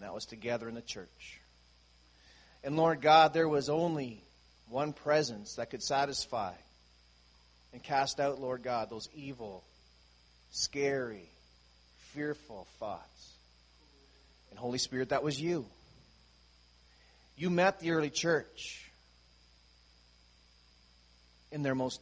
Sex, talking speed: male, 110 wpm